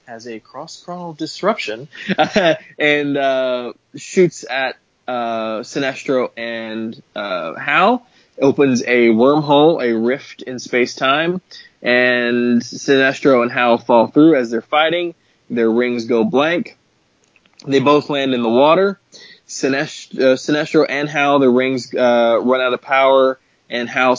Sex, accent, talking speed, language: male, American, 130 wpm, English